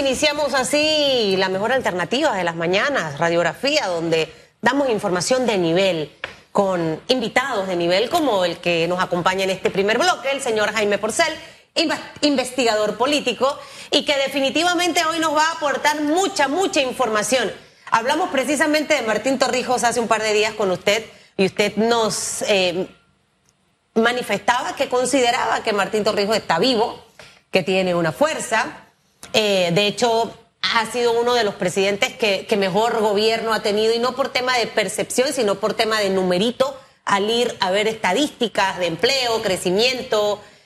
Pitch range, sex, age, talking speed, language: 200-270 Hz, female, 30-49, 155 wpm, Spanish